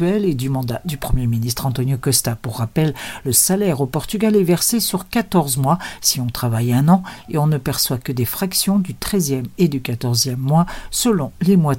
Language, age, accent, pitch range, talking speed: Portuguese, 50-69, French, 130-180 Hz, 205 wpm